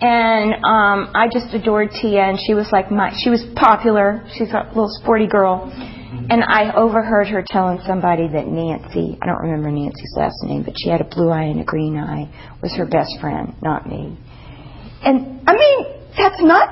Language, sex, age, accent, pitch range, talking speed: English, female, 50-69, American, 190-255 Hz, 195 wpm